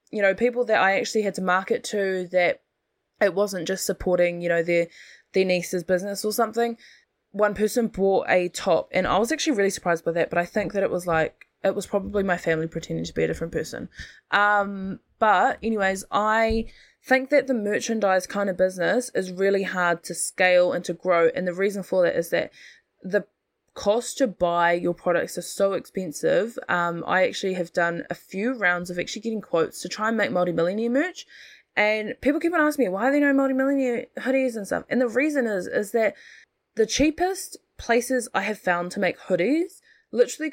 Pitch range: 180-245 Hz